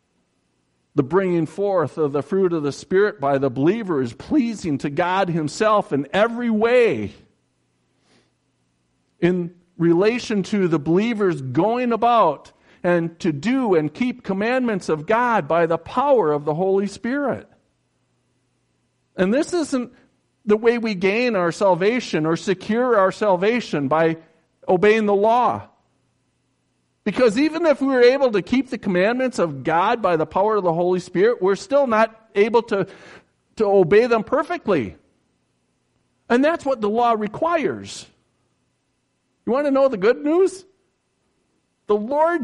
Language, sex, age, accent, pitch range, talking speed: English, male, 50-69, American, 185-270 Hz, 145 wpm